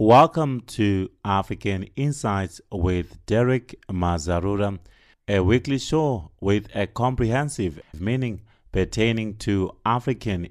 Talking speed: 95 wpm